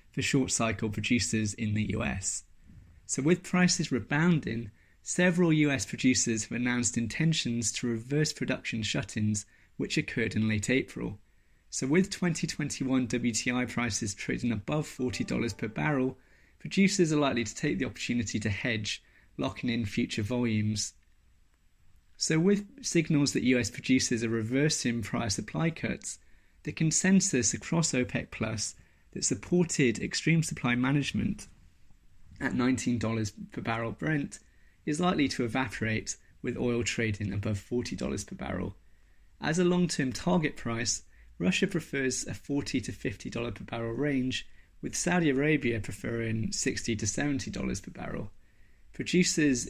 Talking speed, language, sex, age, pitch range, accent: 130 wpm, French, male, 20-39, 110-145 Hz, British